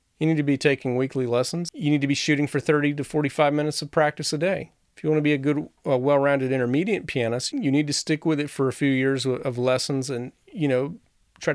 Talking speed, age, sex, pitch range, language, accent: 250 wpm, 40-59, male, 130-150 Hz, English, American